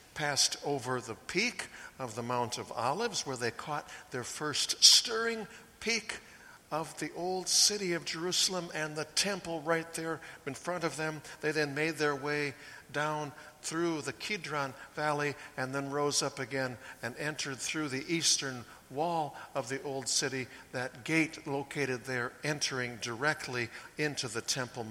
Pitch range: 125-165 Hz